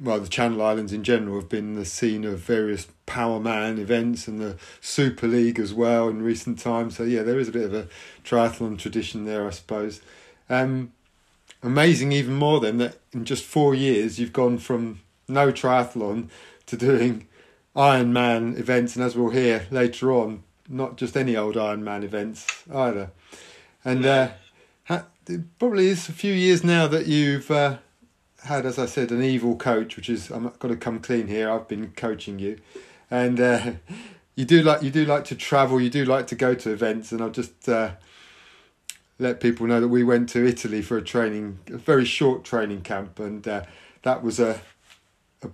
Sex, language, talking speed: male, English, 190 wpm